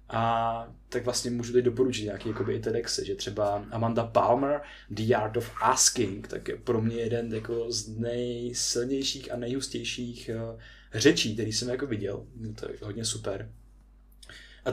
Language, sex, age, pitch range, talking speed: Czech, male, 20-39, 120-140 Hz, 155 wpm